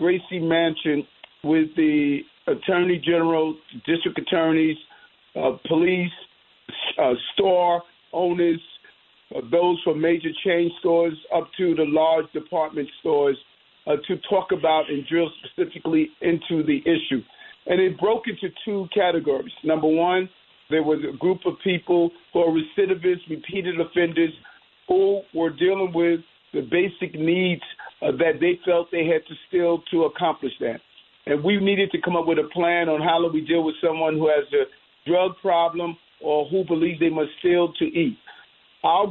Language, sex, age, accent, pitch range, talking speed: English, male, 50-69, American, 160-190 Hz, 160 wpm